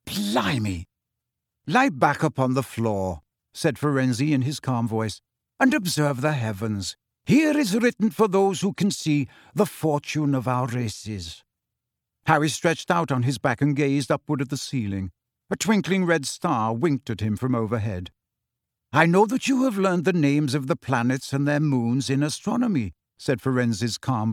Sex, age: male, 60-79